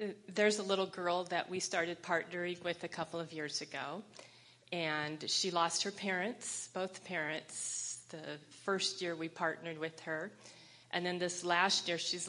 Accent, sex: American, female